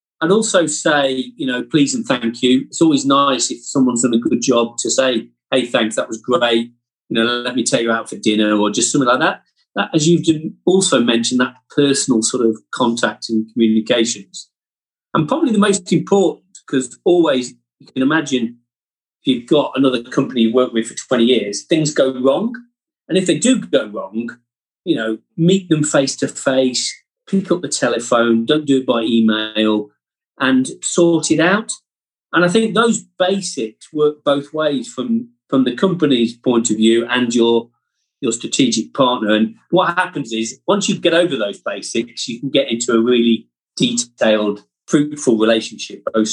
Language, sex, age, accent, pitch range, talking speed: English, male, 40-59, British, 115-160 Hz, 180 wpm